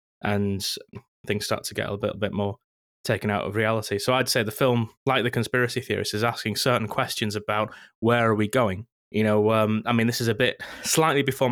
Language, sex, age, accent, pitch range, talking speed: English, male, 20-39, British, 105-125 Hz, 220 wpm